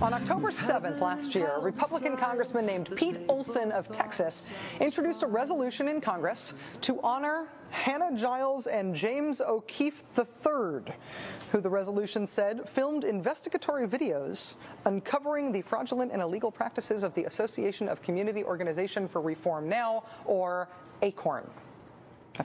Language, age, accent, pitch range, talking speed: English, 30-49, American, 190-260 Hz, 135 wpm